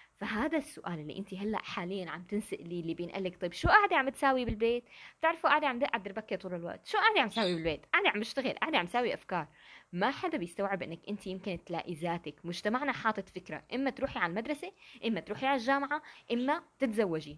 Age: 20-39